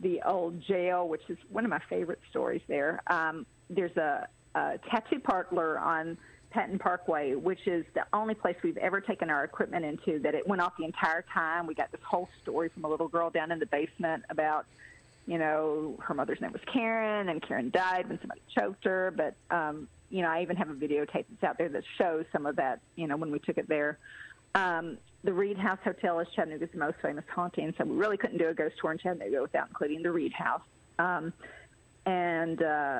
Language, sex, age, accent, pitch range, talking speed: English, female, 40-59, American, 165-200 Hz, 215 wpm